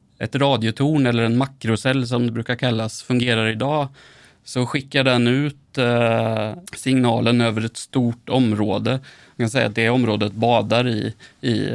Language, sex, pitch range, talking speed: Swedish, male, 110-130 Hz, 150 wpm